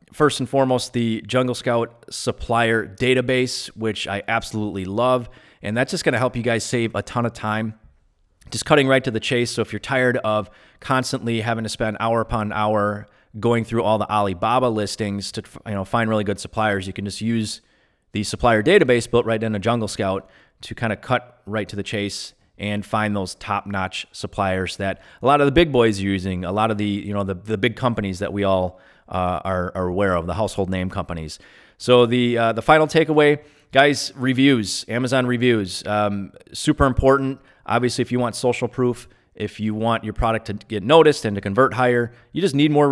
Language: English